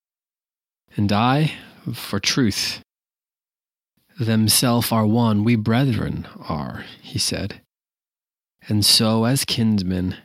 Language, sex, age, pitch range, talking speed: English, male, 30-49, 95-110 Hz, 95 wpm